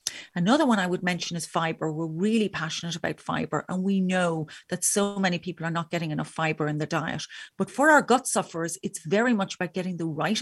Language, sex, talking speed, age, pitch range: English, female, 225 wpm, 40-59, 170-225 Hz